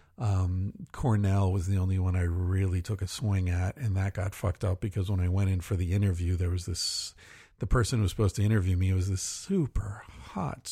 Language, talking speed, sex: English, 230 wpm, male